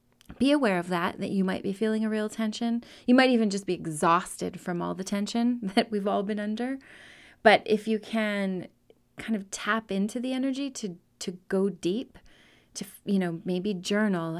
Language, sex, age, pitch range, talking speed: English, female, 30-49, 185-230 Hz, 190 wpm